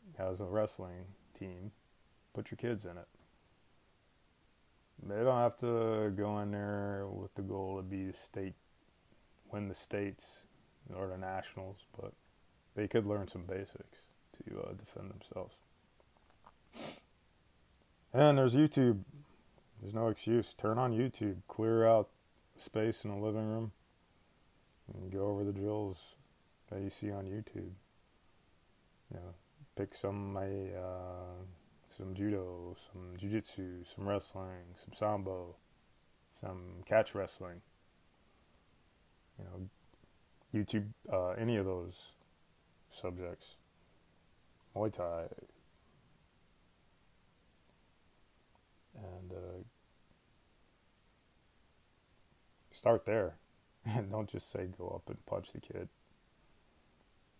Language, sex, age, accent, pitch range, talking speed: English, male, 20-39, American, 90-110 Hz, 110 wpm